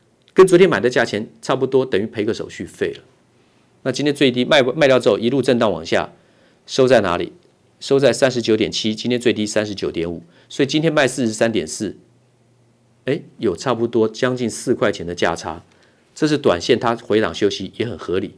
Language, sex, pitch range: Chinese, male, 110-130 Hz